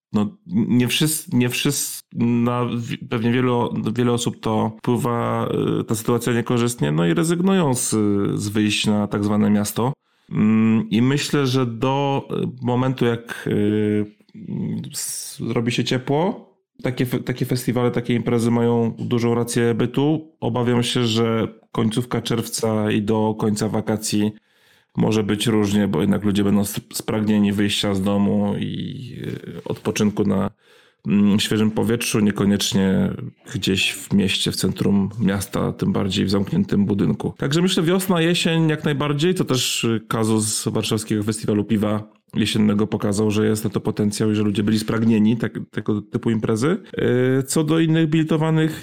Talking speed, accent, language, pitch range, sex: 140 wpm, native, Polish, 105-125 Hz, male